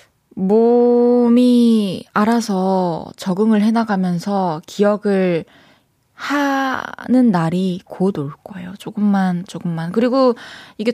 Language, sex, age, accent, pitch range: Korean, female, 20-39, native, 170-215 Hz